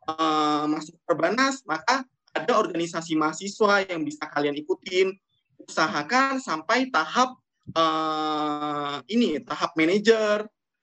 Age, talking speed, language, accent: 20-39, 100 wpm, English, Indonesian